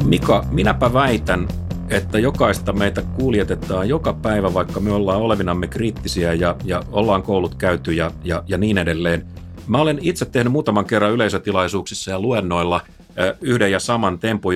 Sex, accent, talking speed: male, native, 155 wpm